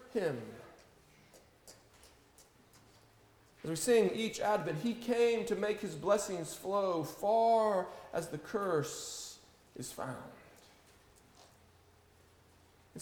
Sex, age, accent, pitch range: male, 40-59, American, 160-240 Hz